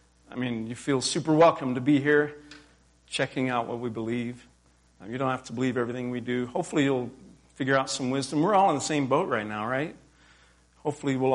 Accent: American